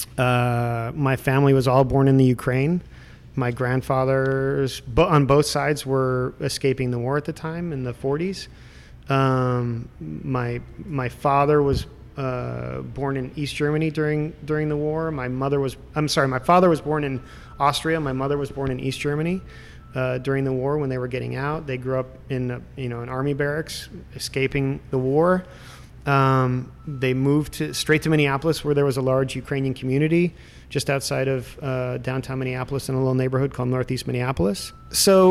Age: 30-49